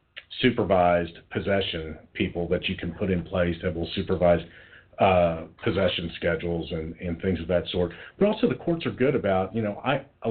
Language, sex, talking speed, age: English, male, 185 wpm, 40-59